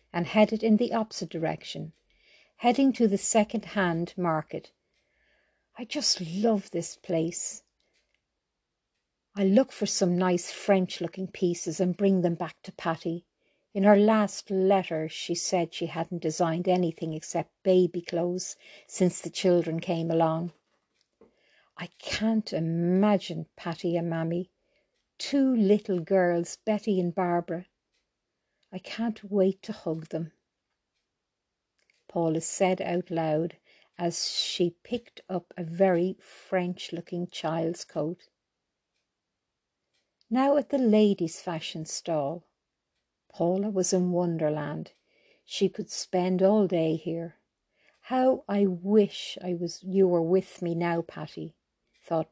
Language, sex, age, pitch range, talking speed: English, female, 60-79, 170-200 Hz, 120 wpm